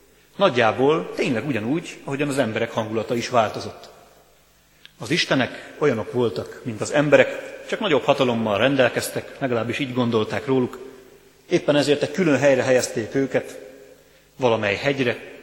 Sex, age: male, 30-49